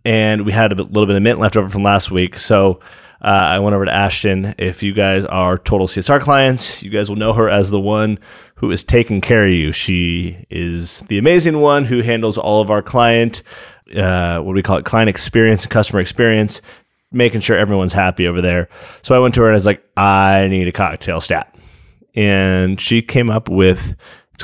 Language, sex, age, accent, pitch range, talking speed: English, male, 30-49, American, 95-115 Hz, 215 wpm